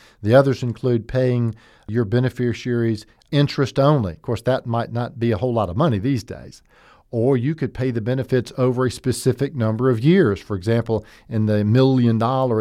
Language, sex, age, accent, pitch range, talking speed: English, male, 50-69, American, 105-130 Hz, 180 wpm